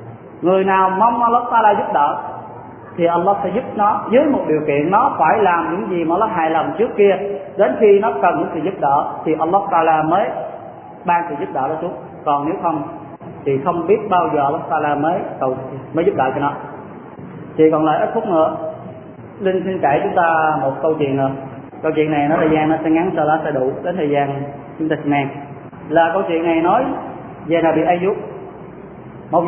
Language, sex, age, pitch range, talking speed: Vietnamese, male, 20-39, 155-195 Hz, 220 wpm